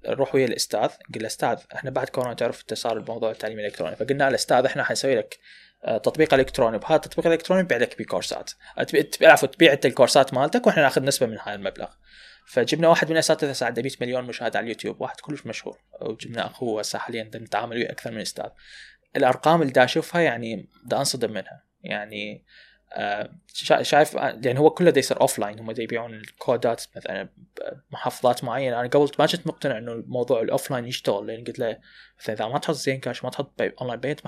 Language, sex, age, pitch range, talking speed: Arabic, male, 20-39, 115-155 Hz, 185 wpm